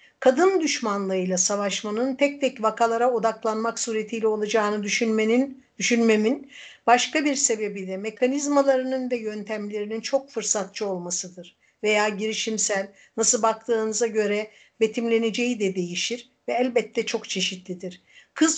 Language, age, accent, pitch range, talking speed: Turkish, 60-79, native, 200-245 Hz, 110 wpm